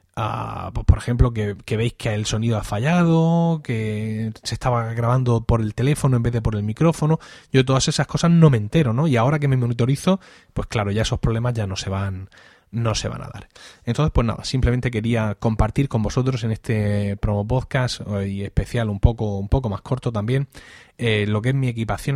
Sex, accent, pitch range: male, Spanish, 110-150 Hz